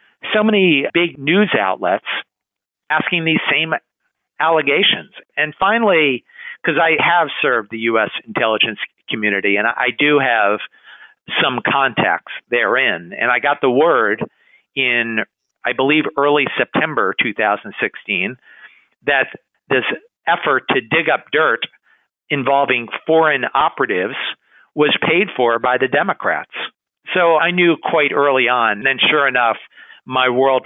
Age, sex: 50-69, male